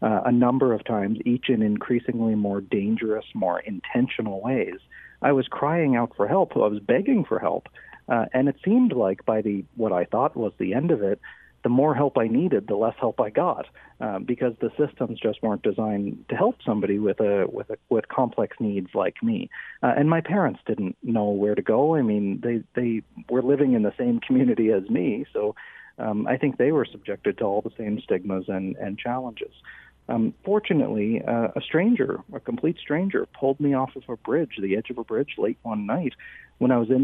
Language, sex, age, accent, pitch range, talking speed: English, male, 40-59, American, 105-135 Hz, 210 wpm